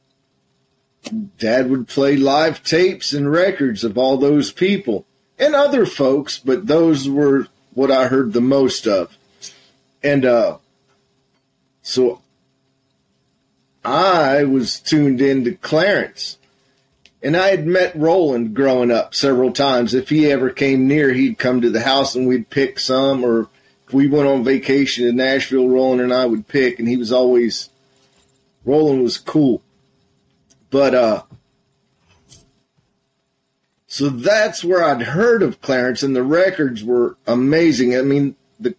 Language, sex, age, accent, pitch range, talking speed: English, male, 40-59, American, 130-155 Hz, 140 wpm